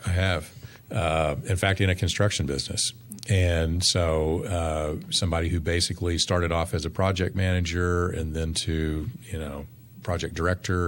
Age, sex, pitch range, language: 40-59, male, 85-105 Hz, English